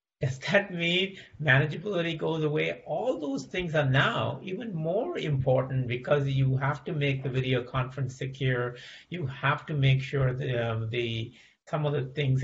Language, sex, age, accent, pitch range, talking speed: English, male, 50-69, American, 120-150 Hz, 170 wpm